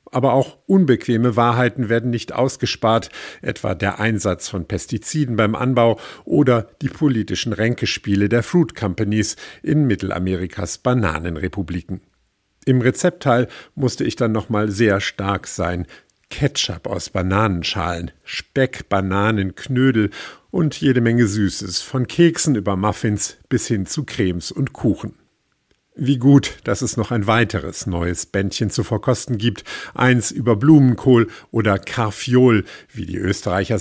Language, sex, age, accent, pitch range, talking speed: German, male, 50-69, German, 100-125 Hz, 130 wpm